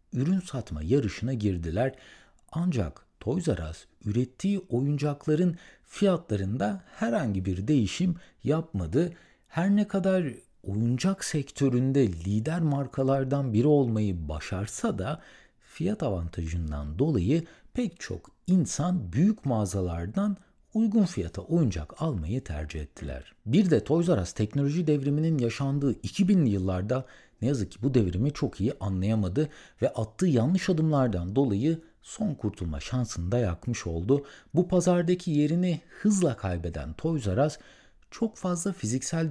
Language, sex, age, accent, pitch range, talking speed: Turkish, male, 60-79, native, 105-170 Hz, 120 wpm